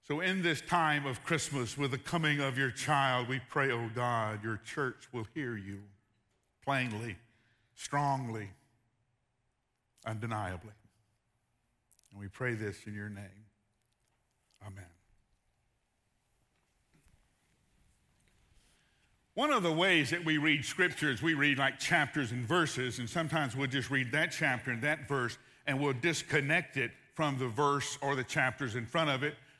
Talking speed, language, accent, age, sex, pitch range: 140 wpm, English, American, 50-69, male, 120-165 Hz